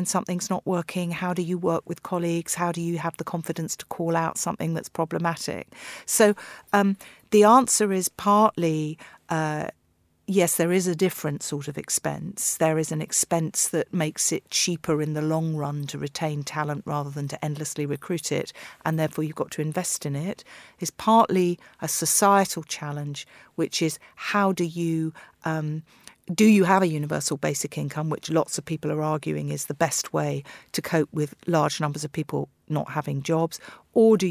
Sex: female